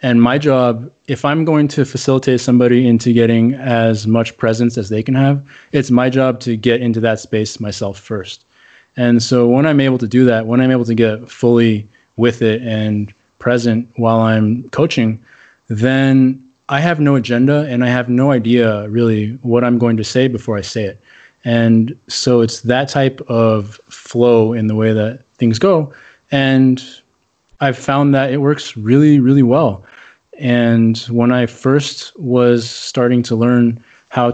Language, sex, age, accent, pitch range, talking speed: English, male, 20-39, American, 115-130 Hz, 175 wpm